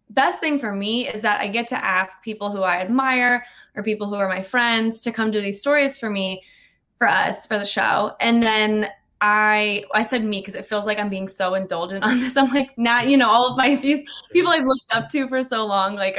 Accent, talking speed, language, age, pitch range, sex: American, 245 wpm, English, 20-39, 195-240 Hz, female